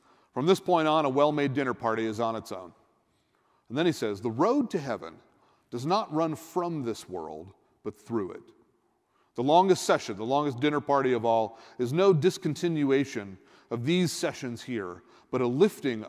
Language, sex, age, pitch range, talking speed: English, male, 40-59, 115-150 Hz, 180 wpm